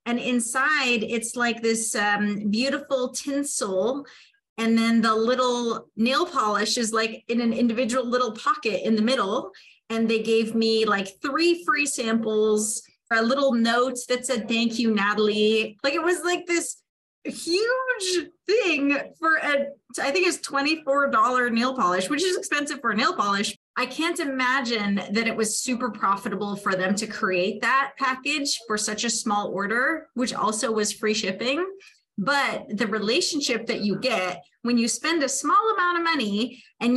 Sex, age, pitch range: female, 30-49, 220-290 Hz